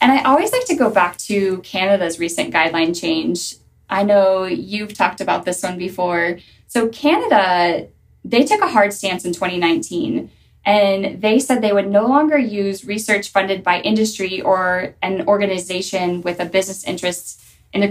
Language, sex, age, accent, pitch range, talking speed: English, female, 20-39, American, 185-235 Hz, 170 wpm